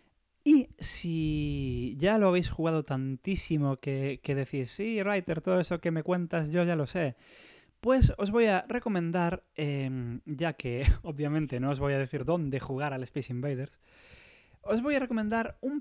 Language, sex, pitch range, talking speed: English, male, 130-185 Hz, 170 wpm